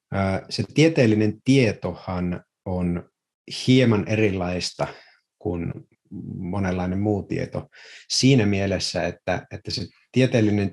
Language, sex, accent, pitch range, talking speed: Finnish, male, native, 90-115 Hz, 85 wpm